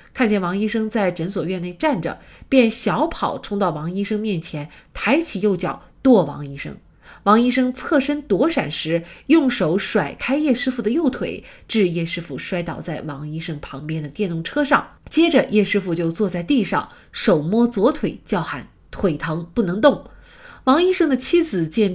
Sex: female